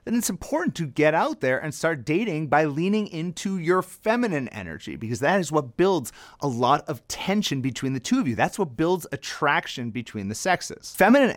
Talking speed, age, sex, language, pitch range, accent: 200 wpm, 30-49, male, English, 125-180 Hz, American